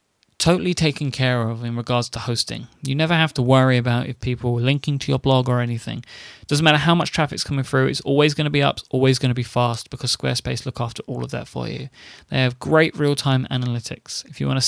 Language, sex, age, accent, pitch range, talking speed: English, male, 20-39, British, 125-155 Hz, 250 wpm